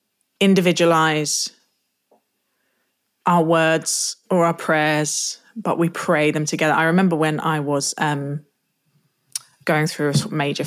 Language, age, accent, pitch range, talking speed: English, 20-39, British, 155-195 Hz, 120 wpm